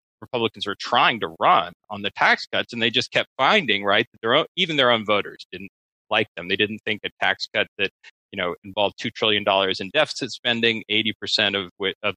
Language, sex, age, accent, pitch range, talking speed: English, male, 30-49, American, 100-125 Hz, 230 wpm